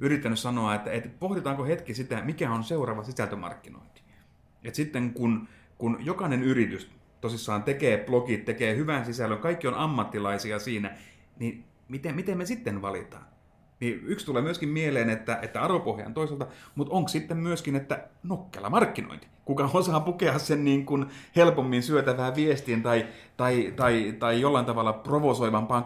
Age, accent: 30-49, native